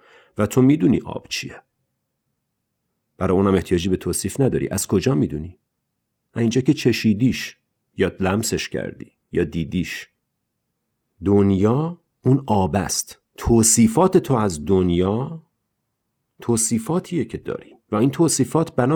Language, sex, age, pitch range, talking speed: Persian, male, 50-69, 95-140 Hz, 115 wpm